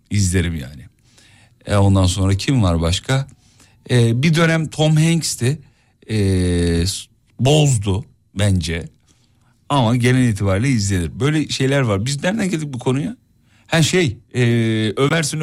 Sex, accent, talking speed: male, native, 125 wpm